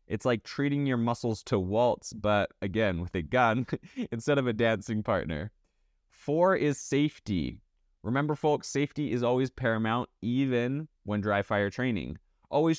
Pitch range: 100-130 Hz